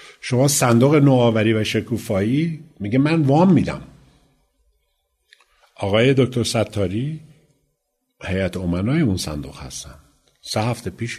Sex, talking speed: male, 105 wpm